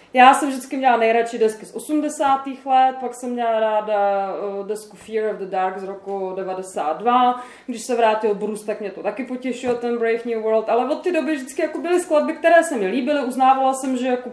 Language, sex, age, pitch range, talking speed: Czech, female, 20-39, 220-255 Hz, 215 wpm